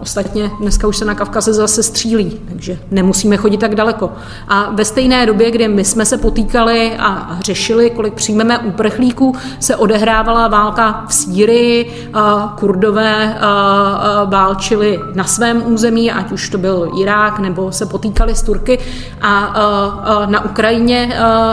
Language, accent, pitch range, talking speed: Czech, native, 200-225 Hz, 140 wpm